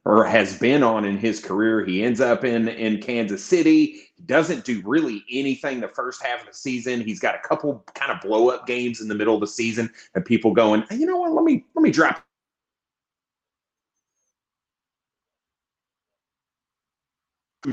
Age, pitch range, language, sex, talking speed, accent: 30-49, 110-130 Hz, English, male, 175 wpm, American